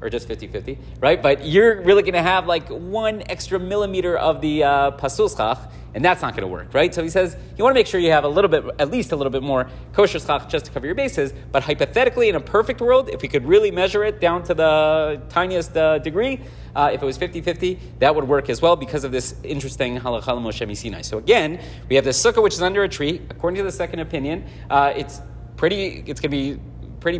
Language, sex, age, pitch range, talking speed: English, male, 30-49, 135-175 Hz, 245 wpm